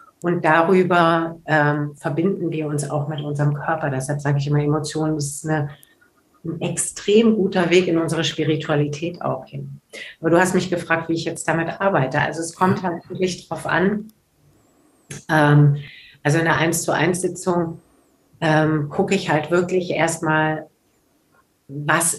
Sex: female